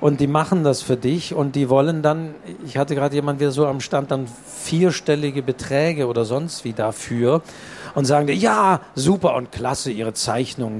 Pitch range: 135-160 Hz